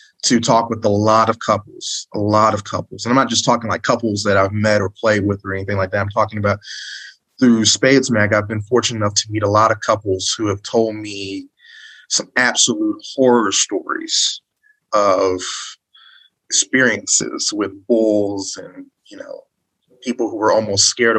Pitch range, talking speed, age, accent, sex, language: 100-120 Hz, 180 wpm, 30-49, American, male, English